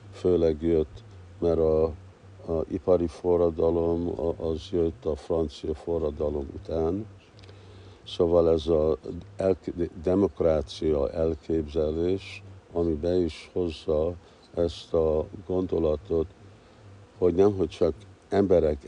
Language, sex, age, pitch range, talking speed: Hungarian, male, 60-79, 80-95 Hz, 90 wpm